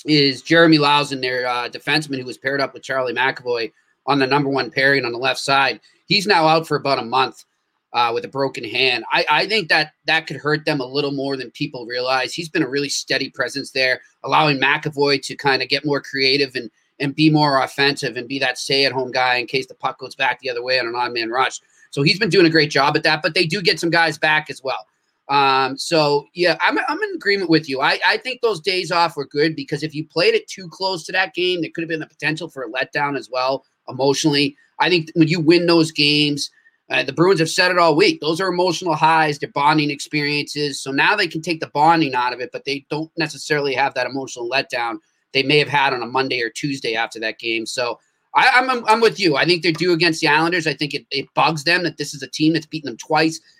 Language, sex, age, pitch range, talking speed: English, male, 30-49, 135-170 Hz, 250 wpm